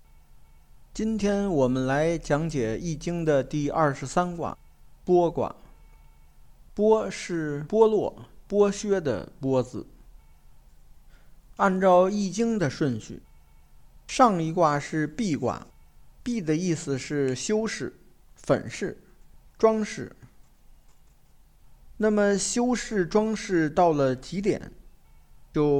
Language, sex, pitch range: Chinese, male, 135-190 Hz